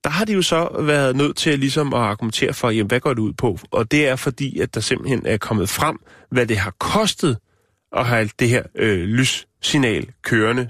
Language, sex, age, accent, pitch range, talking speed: Danish, male, 30-49, native, 120-155 Hz, 225 wpm